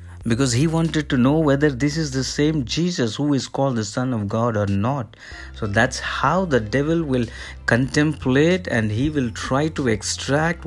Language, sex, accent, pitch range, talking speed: English, male, Indian, 110-145 Hz, 185 wpm